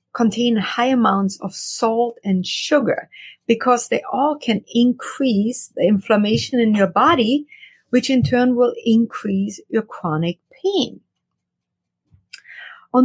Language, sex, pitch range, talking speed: English, female, 205-255 Hz, 120 wpm